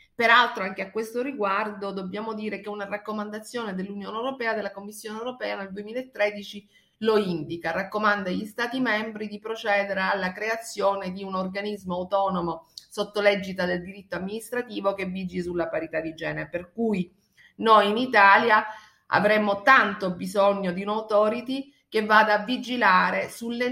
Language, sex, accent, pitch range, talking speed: Italian, female, native, 190-225 Hz, 145 wpm